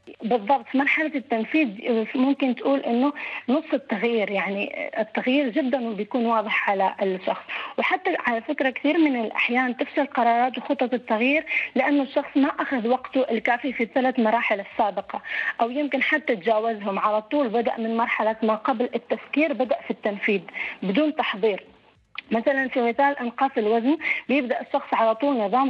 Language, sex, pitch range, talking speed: Arabic, female, 225-275 Hz, 145 wpm